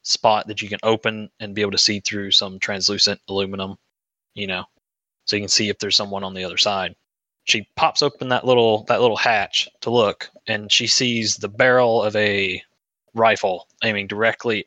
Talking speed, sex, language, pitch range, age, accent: 190 wpm, male, English, 105-130 Hz, 20-39, American